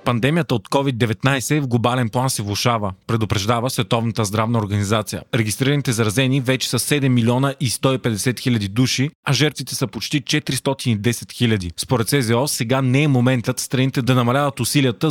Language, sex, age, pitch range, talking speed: Bulgarian, male, 30-49, 115-140 Hz, 150 wpm